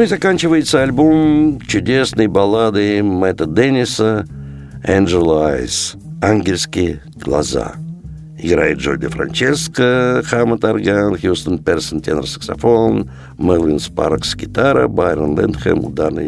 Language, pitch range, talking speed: Russian, 85-125 Hz, 90 wpm